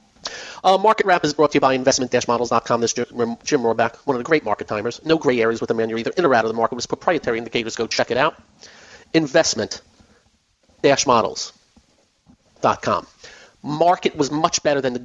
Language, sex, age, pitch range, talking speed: English, male, 40-59, 120-155 Hz, 190 wpm